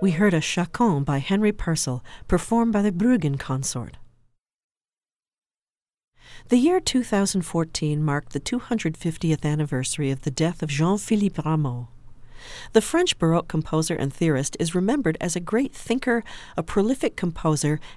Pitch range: 145-205 Hz